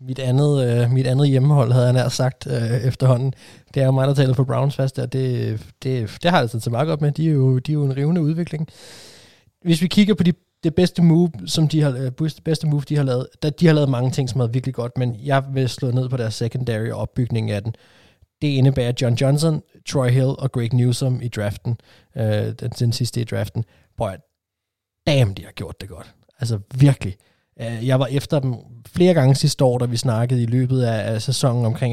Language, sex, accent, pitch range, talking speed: Danish, male, native, 115-135 Hz, 220 wpm